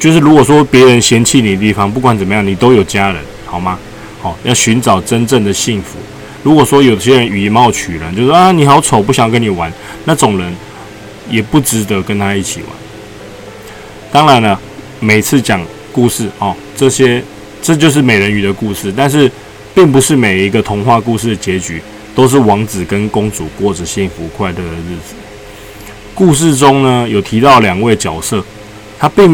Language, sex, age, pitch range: Chinese, male, 20-39, 100-125 Hz